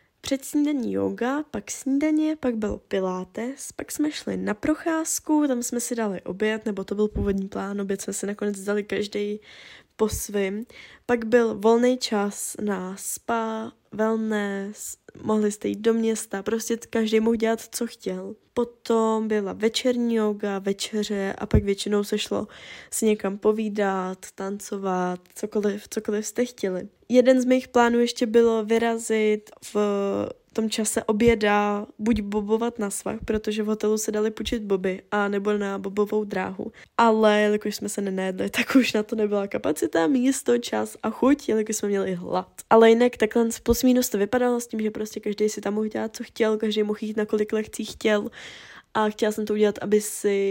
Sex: female